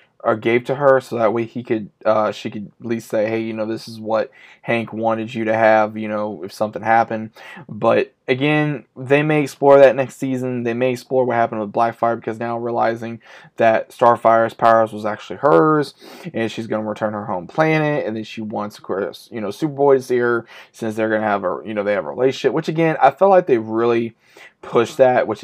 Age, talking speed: 20-39, 230 wpm